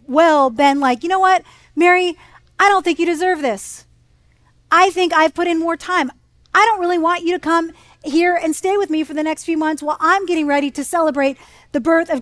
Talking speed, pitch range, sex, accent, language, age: 225 wpm, 295-365 Hz, female, American, English, 40-59